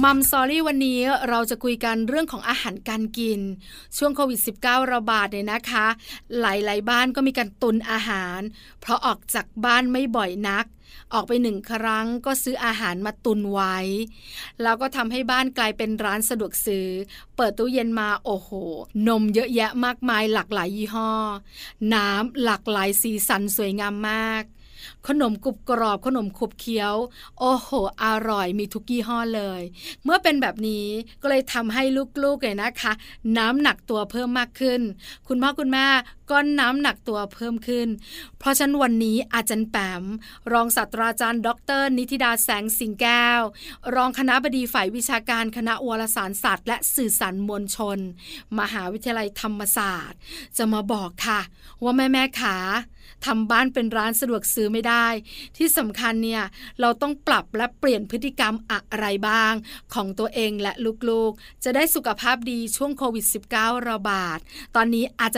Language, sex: Thai, female